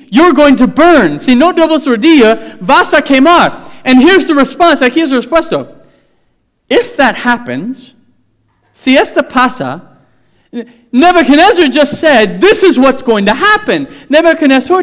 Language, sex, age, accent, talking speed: English, male, 40-59, American, 140 wpm